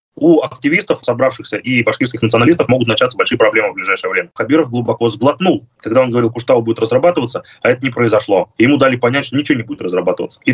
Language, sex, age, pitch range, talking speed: Russian, male, 20-39, 115-145 Hz, 205 wpm